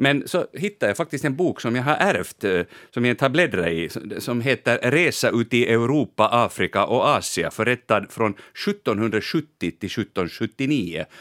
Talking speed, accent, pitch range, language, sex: 160 wpm, Finnish, 95-130 Hz, Swedish, male